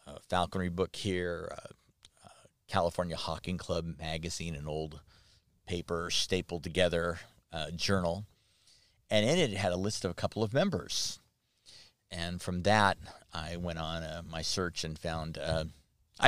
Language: English